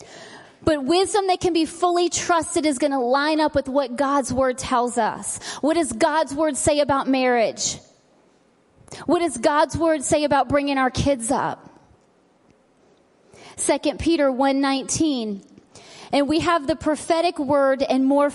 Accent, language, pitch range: American, English, 265-320 Hz